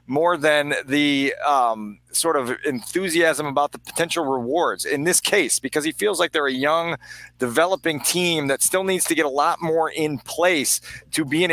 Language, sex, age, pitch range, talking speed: English, male, 40-59, 125-155 Hz, 185 wpm